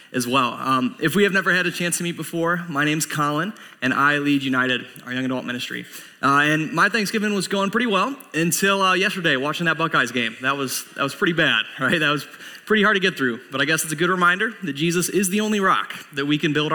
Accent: American